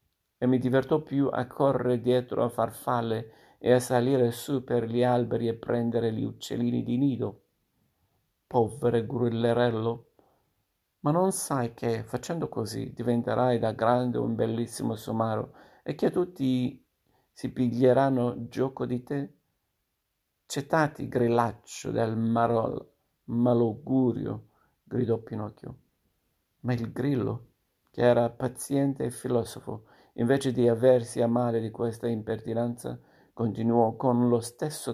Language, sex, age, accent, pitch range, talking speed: Italian, male, 50-69, native, 115-130 Hz, 120 wpm